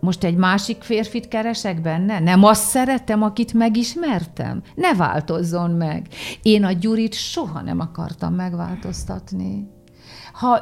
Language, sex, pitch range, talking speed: Hungarian, female, 160-210 Hz, 125 wpm